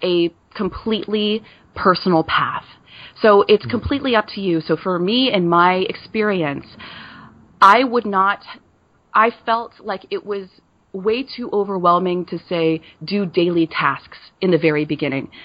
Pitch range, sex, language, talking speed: 170-230 Hz, female, English, 140 wpm